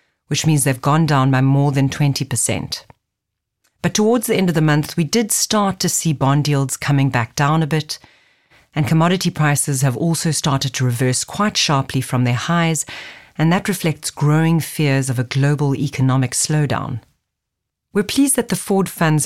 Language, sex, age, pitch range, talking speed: English, female, 40-59, 135-165 Hz, 180 wpm